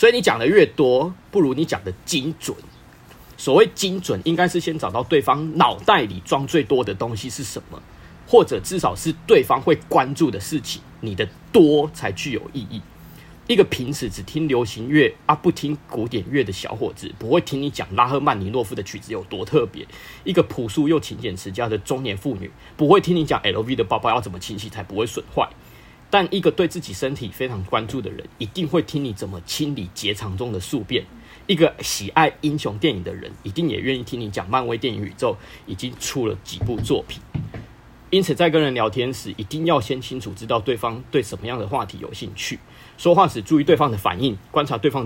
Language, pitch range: Chinese, 110-155 Hz